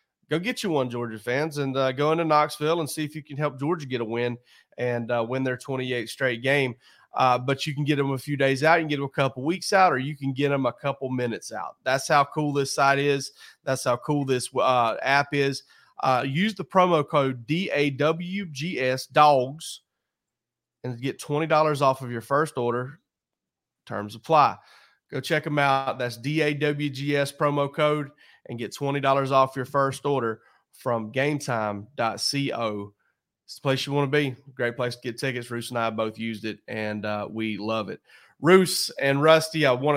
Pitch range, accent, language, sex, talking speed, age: 120-145 Hz, American, English, male, 200 wpm, 30-49